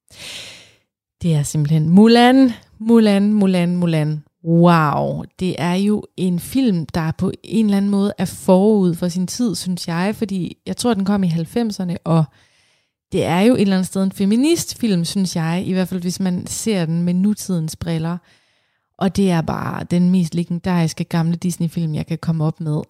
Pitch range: 170-205 Hz